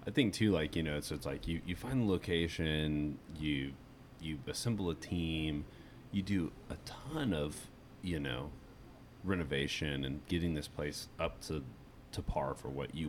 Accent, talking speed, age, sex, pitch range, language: American, 175 wpm, 30-49, male, 70-90 Hz, English